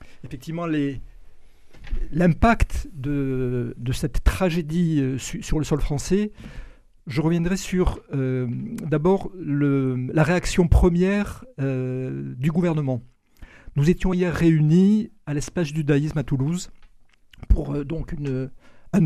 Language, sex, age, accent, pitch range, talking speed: French, male, 60-79, French, 135-165 Hz, 125 wpm